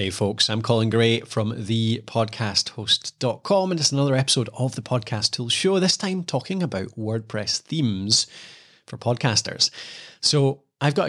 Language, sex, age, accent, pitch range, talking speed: English, male, 30-49, British, 105-135 Hz, 145 wpm